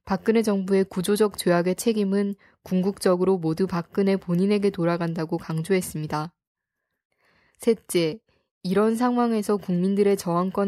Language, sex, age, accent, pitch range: Korean, female, 20-39, native, 175-210 Hz